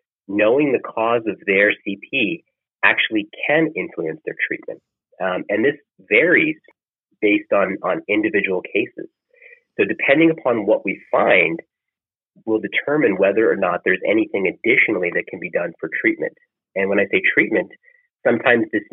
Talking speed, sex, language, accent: 150 wpm, male, English, American